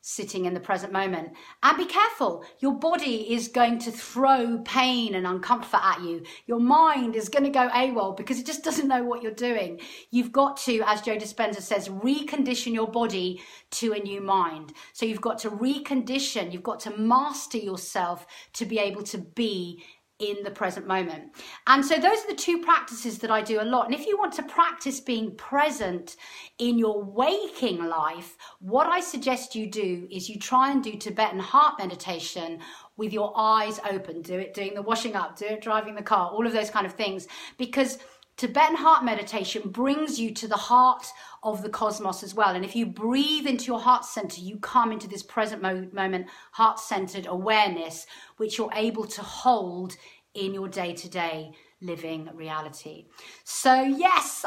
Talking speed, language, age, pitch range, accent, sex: 185 wpm, English, 40-59, 195-260 Hz, British, female